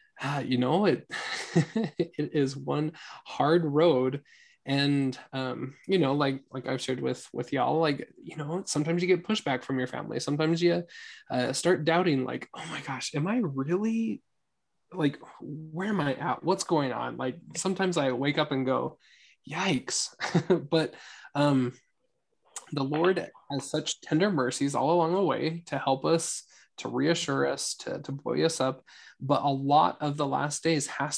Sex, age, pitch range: male, 20-39, 135-165 Hz